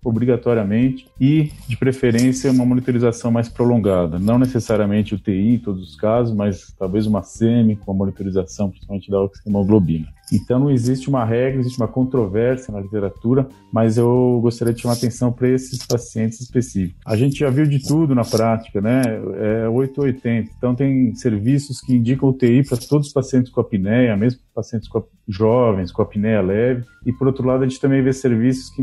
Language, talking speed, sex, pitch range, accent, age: Portuguese, 180 wpm, male, 110-130 Hz, Brazilian, 40-59